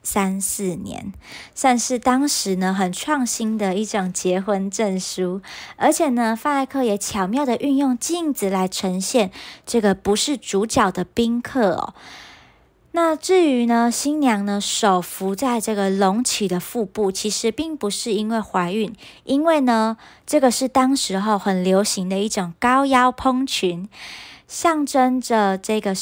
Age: 20-39